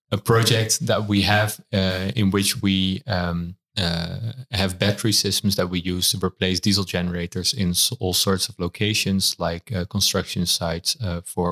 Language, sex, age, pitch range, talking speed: English, male, 20-39, 90-100 Hz, 165 wpm